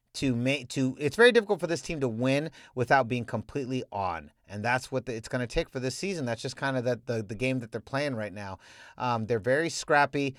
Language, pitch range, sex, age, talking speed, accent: English, 115-155 Hz, male, 30-49, 235 wpm, American